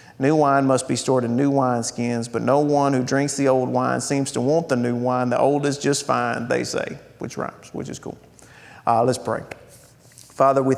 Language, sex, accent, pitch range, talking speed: English, male, American, 120-145 Hz, 215 wpm